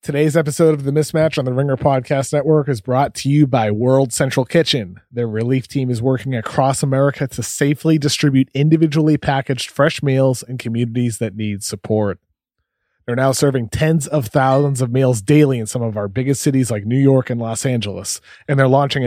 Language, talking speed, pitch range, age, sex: English, 190 wpm, 115-145 Hz, 30-49, male